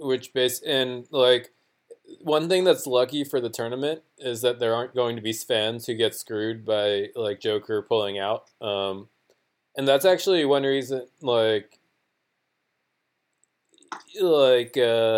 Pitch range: 110-140 Hz